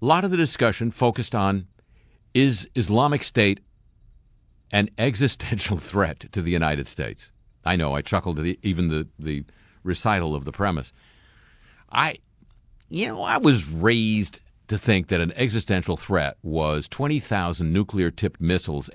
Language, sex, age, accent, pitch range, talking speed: English, male, 50-69, American, 80-110 Hz, 145 wpm